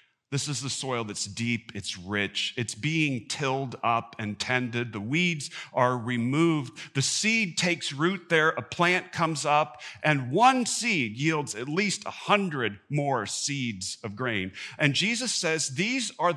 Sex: male